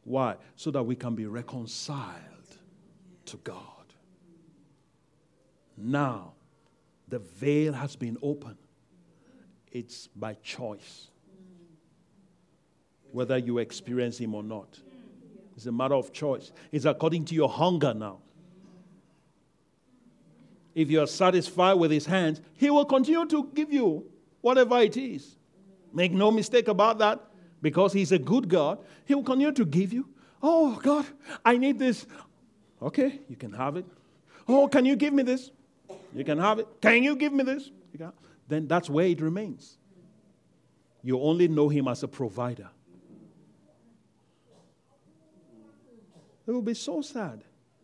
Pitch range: 145-225 Hz